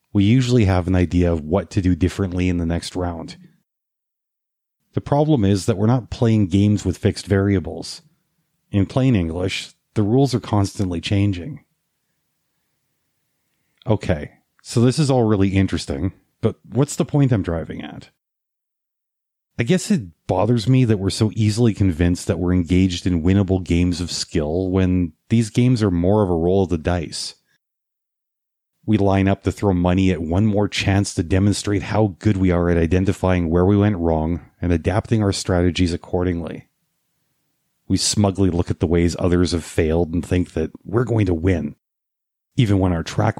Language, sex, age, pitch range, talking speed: English, male, 30-49, 90-110 Hz, 170 wpm